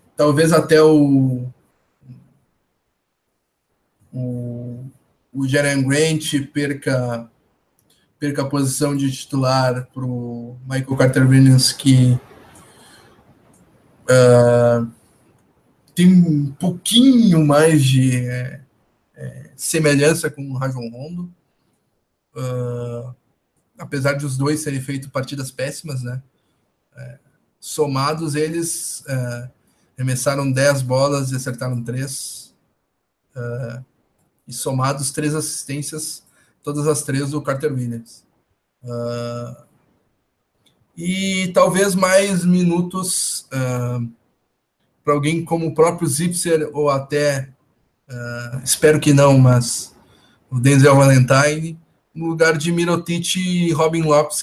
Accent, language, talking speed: Brazilian, Portuguese, 100 wpm